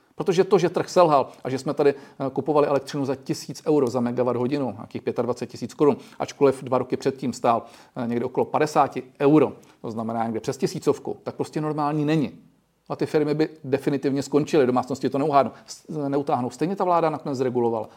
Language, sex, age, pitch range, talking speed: Czech, male, 40-59, 120-145 Hz, 175 wpm